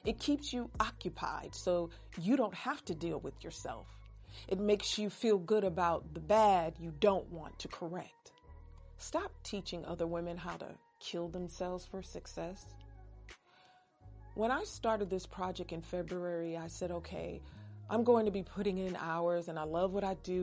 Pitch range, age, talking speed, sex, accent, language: 170-210 Hz, 40-59, 170 wpm, female, American, English